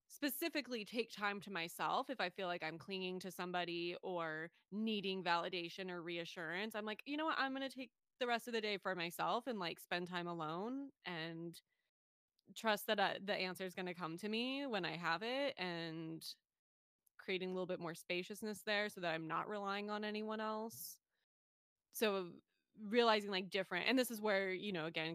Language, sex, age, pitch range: English, female, 20-39, 175-210 Hz